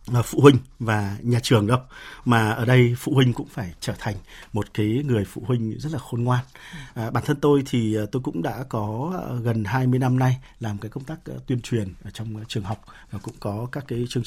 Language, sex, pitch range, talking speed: Vietnamese, male, 115-150 Hz, 225 wpm